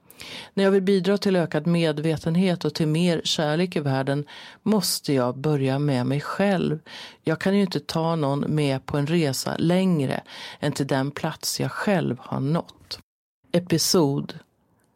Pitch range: 150-175 Hz